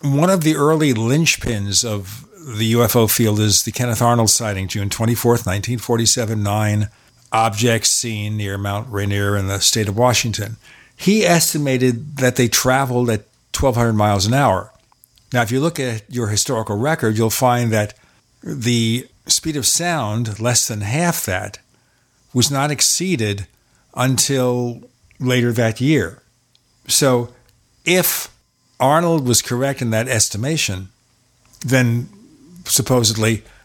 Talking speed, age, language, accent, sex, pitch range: 130 wpm, 50-69, English, American, male, 110-135 Hz